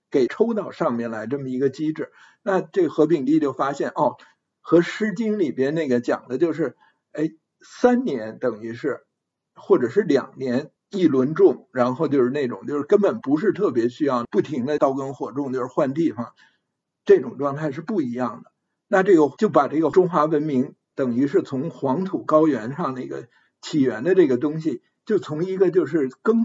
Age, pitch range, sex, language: 50-69, 135-215 Hz, male, Chinese